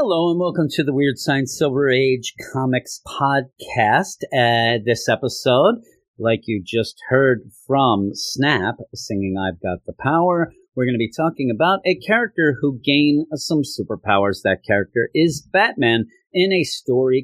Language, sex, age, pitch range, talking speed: English, male, 40-59, 110-150 Hz, 155 wpm